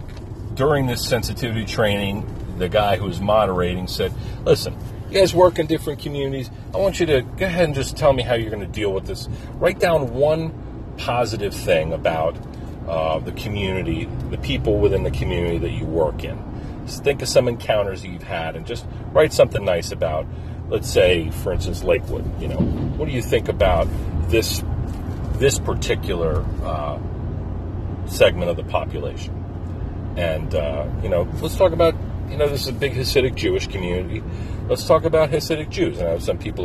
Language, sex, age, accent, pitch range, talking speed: English, male, 40-59, American, 90-120 Hz, 180 wpm